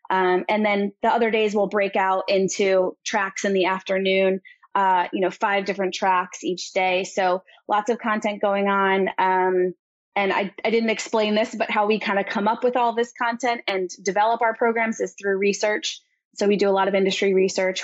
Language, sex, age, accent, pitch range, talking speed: English, female, 20-39, American, 190-220 Hz, 205 wpm